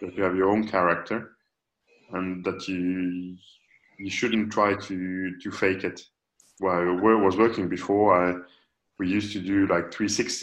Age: 20-39